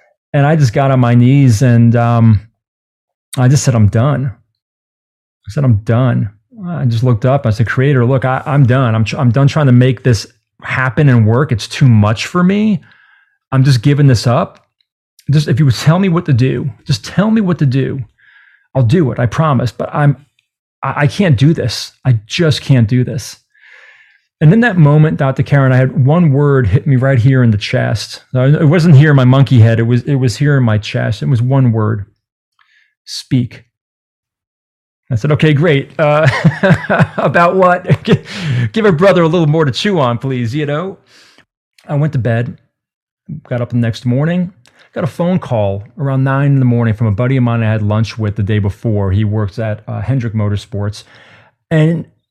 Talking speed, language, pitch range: 200 wpm, English, 115-150 Hz